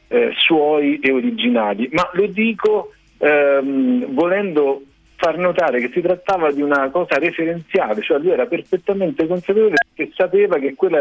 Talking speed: 145 wpm